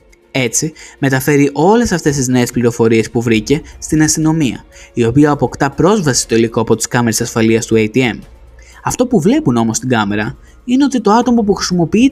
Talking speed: 175 wpm